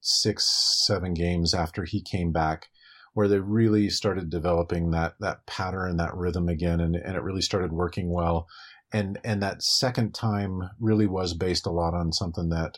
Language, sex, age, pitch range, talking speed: English, male, 40-59, 85-100 Hz, 180 wpm